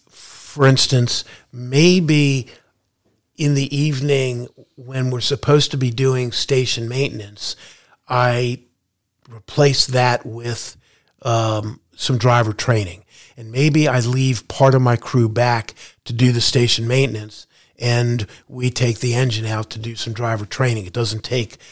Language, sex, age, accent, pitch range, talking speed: English, male, 50-69, American, 115-130 Hz, 140 wpm